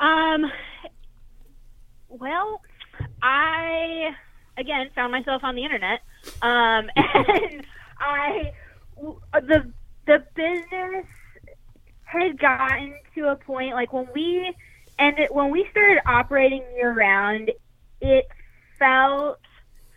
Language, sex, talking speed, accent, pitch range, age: English, female, 95 wpm, American, 195-265 Hz, 20-39